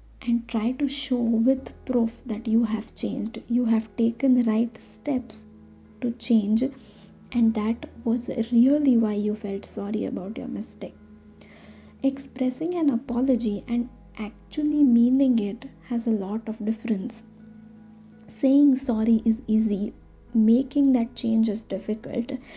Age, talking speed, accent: 20-39, 135 wpm, Indian